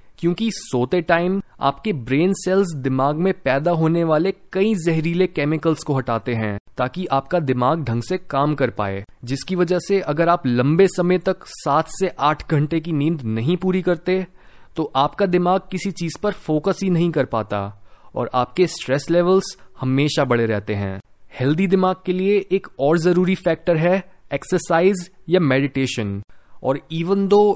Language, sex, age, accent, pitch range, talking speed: Hindi, male, 20-39, native, 135-185 Hz, 165 wpm